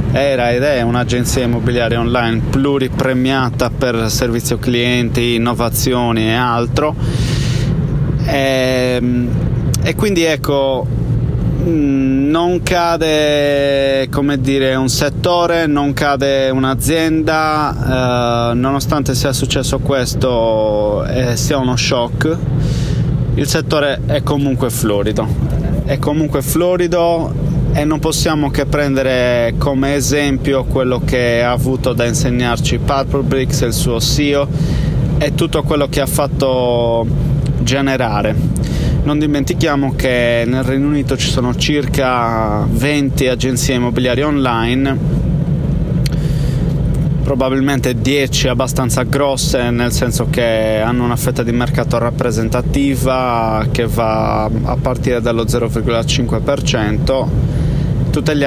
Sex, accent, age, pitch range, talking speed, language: male, native, 20-39, 120-145 Hz, 105 wpm, Italian